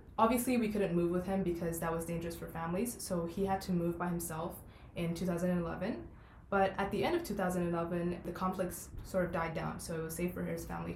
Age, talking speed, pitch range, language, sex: 20-39, 220 wpm, 165-195 Hz, English, female